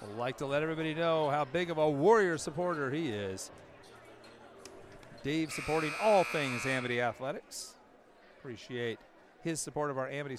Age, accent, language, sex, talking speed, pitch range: 40-59, American, English, male, 150 wpm, 135-165 Hz